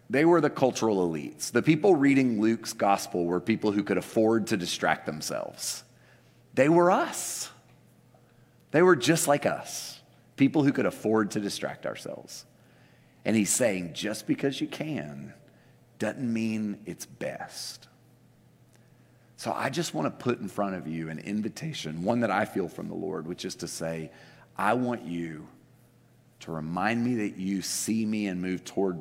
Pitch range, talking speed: 90-110 Hz, 165 wpm